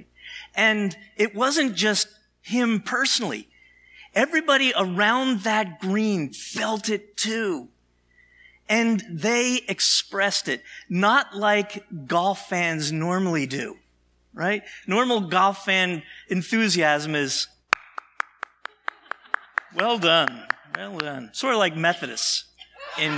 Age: 50-69